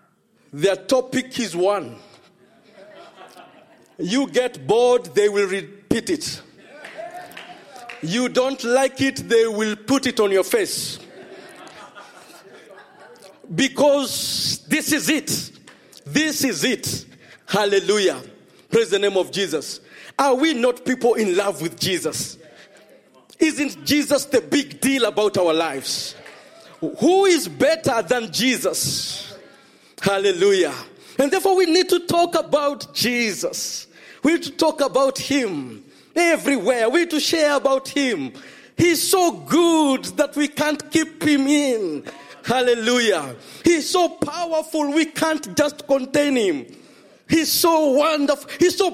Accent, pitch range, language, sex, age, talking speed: South African, 245-315 Hz, English, male, 40-59, 125 wpm